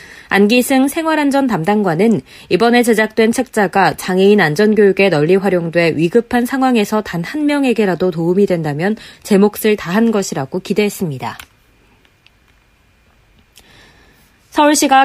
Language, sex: Korean, female